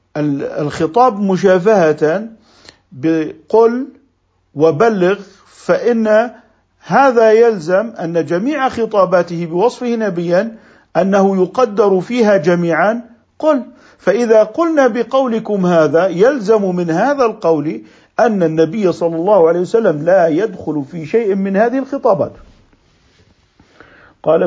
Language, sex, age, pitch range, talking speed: Arabic, male, 50-69, 130-195 Hz, 95 wpm